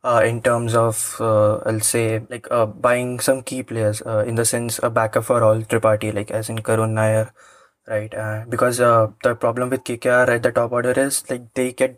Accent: Indian